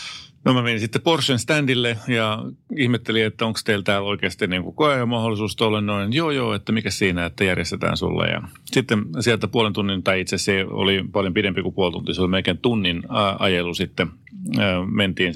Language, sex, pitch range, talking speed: Finnish, male, 95-120 Hz, 190 wpm